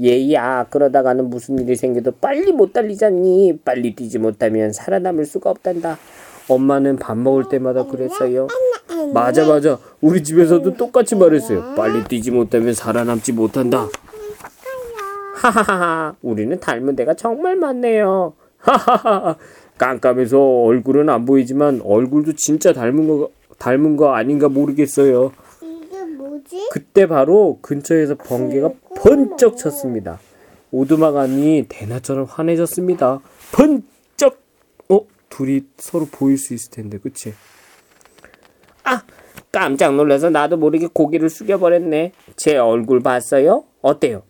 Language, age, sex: Korean, 20-39, male